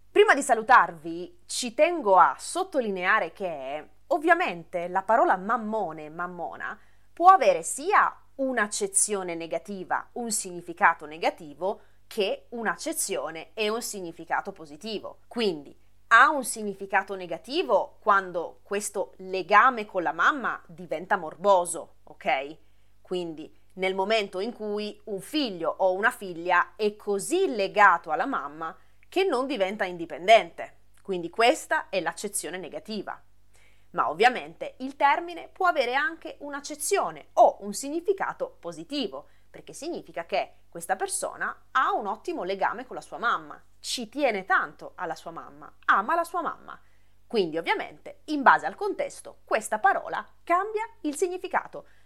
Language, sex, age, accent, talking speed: Italian, female, 30-49, native, 130 wpm